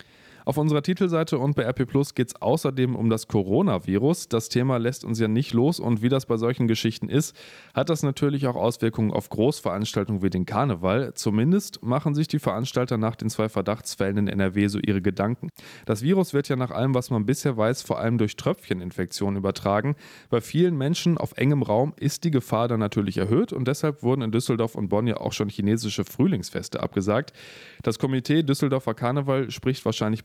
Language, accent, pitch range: German, German, 105-135 Hz